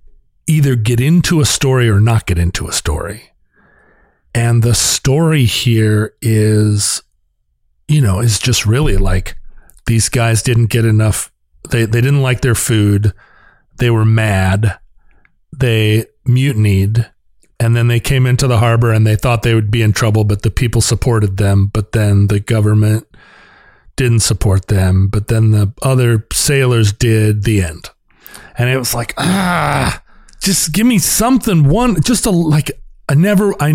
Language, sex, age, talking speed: English, male, 40-59, 160 wpm